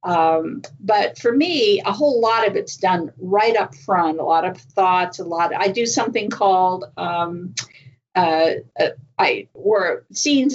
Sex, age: female, 50-69